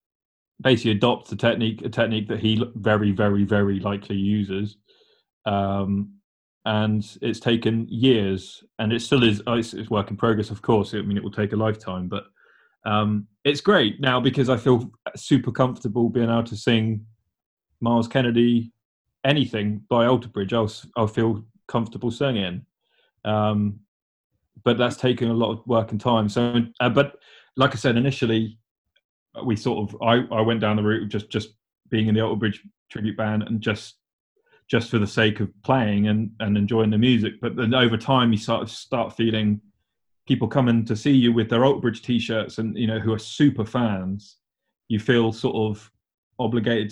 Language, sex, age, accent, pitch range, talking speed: English, male, 20-39, British, 105-120 Hz, 175 wpm